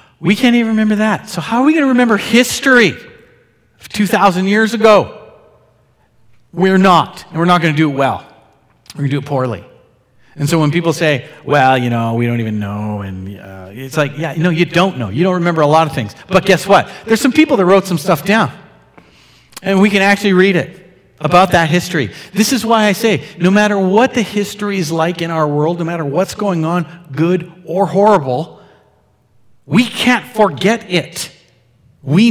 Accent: American